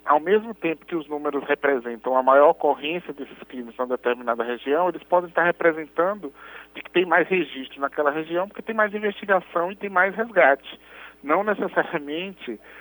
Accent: Brazilian